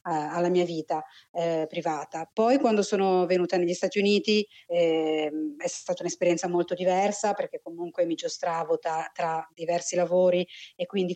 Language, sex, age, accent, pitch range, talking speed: Italian, female, 20-39, native, 170-195 Hz, 150 wpm